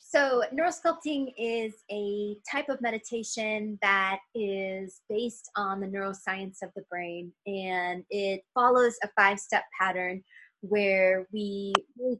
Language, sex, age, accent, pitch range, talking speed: English, female, 20-39, American, 190-220 Hz, 125 wpm